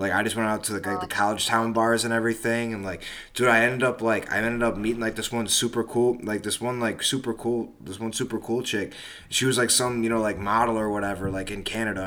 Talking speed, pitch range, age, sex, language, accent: 270 wpm, 105-125 Hz, 20-39, male, English, American